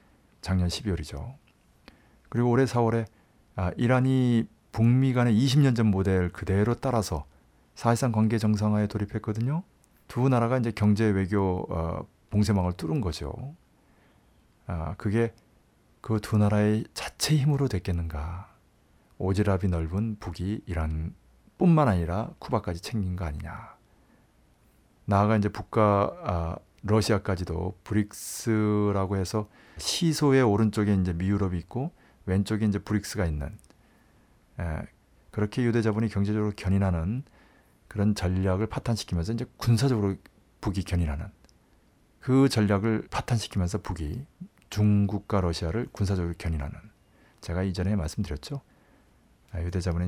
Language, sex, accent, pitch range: Korean, male, native, 85-110 Hz